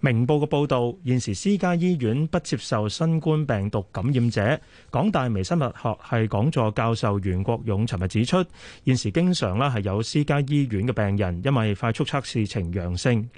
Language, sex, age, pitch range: Chinese, male, 30-49, 105-145 Hz